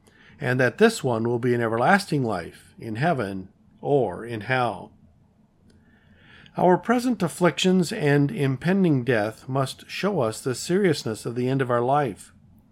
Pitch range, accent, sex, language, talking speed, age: 115-155 Hz, American, male, English, 145 wpm, 50-69